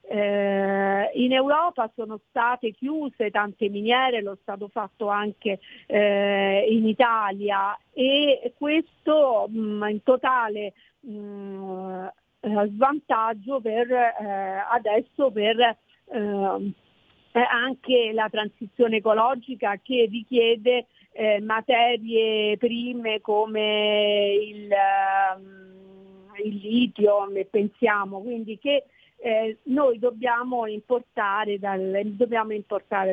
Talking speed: 90 wpm